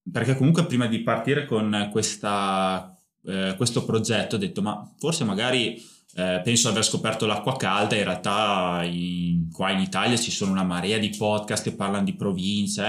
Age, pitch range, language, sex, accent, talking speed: 20-39, 105-135 Hz, Italian, male, native, 175 wpm